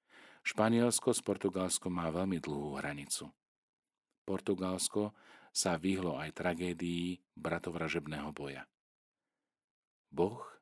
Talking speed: 85 wpm